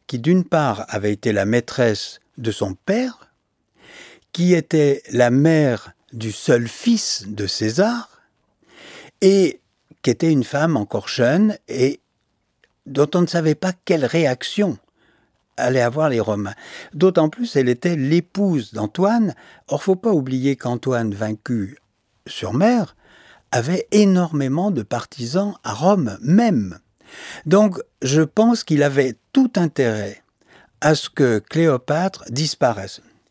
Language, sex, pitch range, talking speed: French, male, 115-175 Hz, 130 wpm